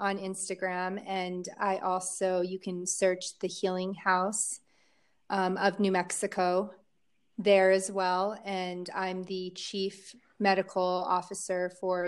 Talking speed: 125 wpm